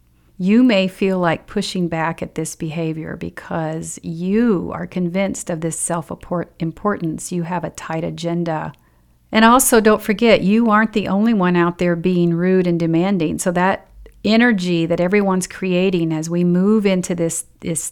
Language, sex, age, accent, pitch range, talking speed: English, female, 40-59, American, 165-200 Hz, 160 wpm